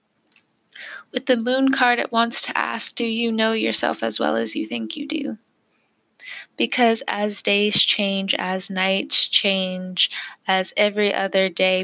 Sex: female